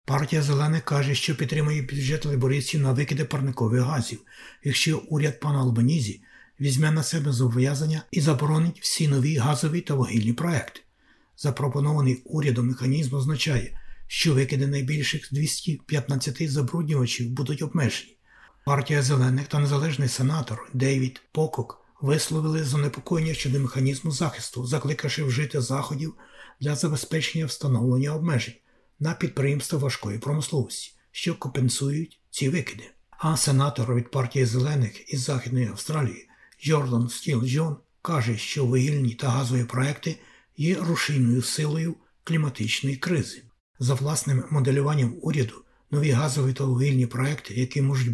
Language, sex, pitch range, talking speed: Ukrainian, male, 130-150 Hz, 120 wpm